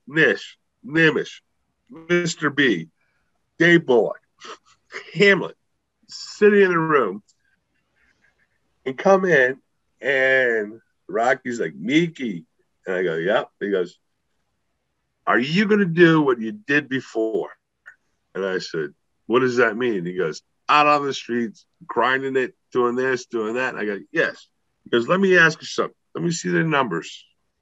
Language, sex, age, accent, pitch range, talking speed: English, male, 50-69, American, 130-175 Hz, 150 wpm